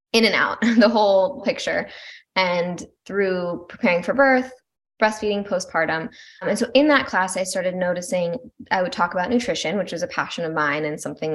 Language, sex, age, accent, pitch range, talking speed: English, female, 10-29, American, 180-250 Hz, 180 wpm